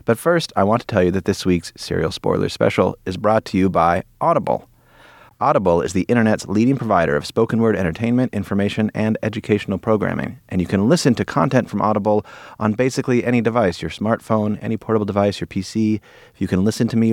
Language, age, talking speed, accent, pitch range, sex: English, 30-49, 205 wpm, American, 90-115 Hz, male